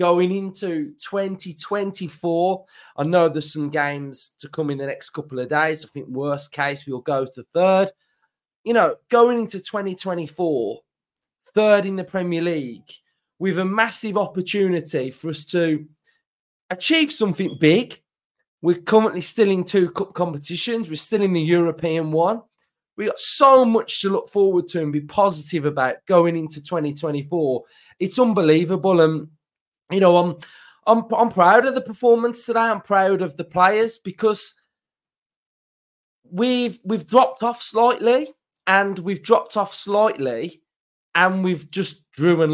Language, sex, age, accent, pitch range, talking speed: English, male, 20-39, British, 160-210 Hz, 150 wpm